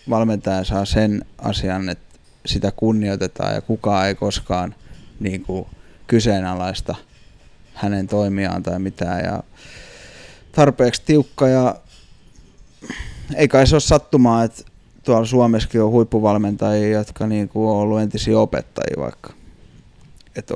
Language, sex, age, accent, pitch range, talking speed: Finnish, male, 20-39, native, 100-115 Hz, 115 wpm